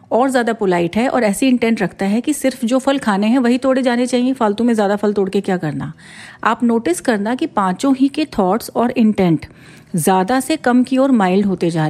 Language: Hindi